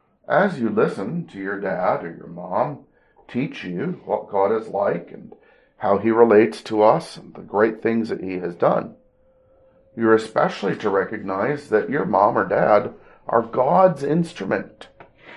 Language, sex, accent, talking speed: English, male, American, 160 wpm